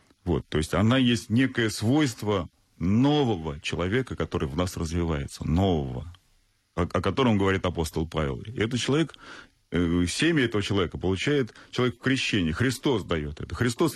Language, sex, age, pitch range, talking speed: Russian, male, 40-59, 80-115 Hz, 145 wpm